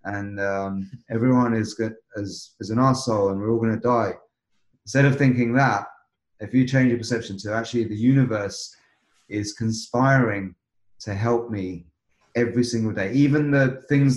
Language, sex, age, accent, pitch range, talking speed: English, male, 30-49, British, 100-125 Hz, 160 wpm